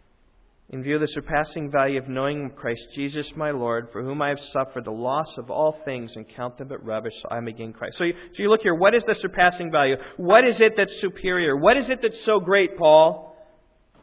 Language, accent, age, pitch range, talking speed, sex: English, American, 40-59, 135-180 Hz, 230 wpm, male